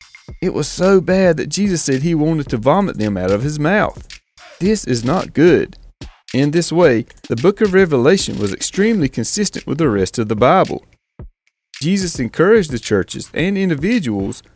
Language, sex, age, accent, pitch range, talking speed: English, male, 40-59, American, 120-185 Hz, 175 wpm